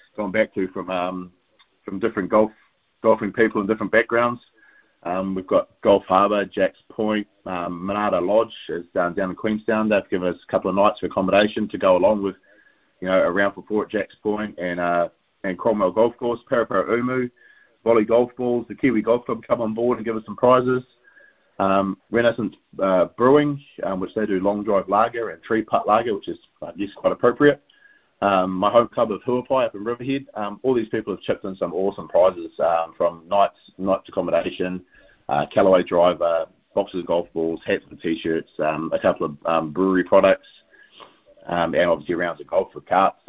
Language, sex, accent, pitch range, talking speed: English, male, Australian, 90-115 Hz, 195 wpm